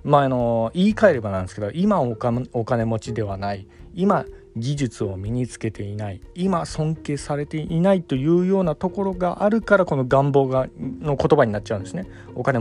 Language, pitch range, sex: Japanese, 110-160 Hz, male